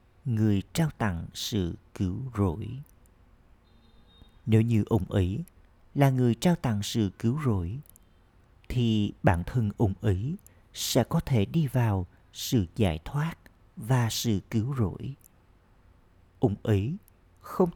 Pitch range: 95-120 Hz